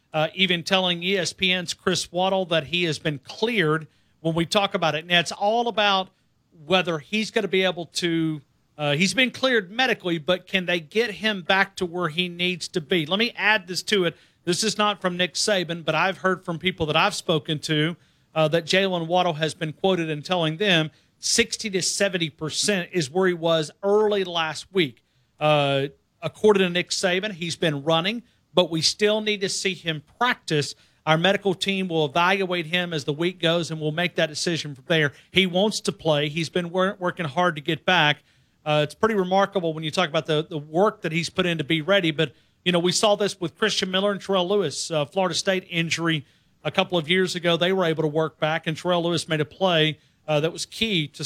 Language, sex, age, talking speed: English, male, 40-59, 215 wpm